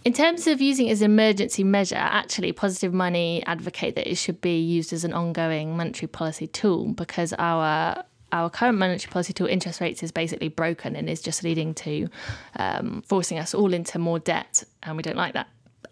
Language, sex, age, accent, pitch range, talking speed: English, female, 20-39, British, 170-210 Hz, 205 wpm